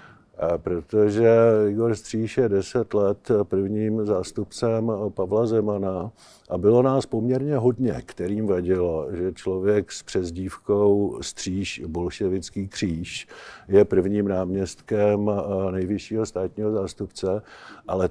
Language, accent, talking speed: Czech, native, 105 wpm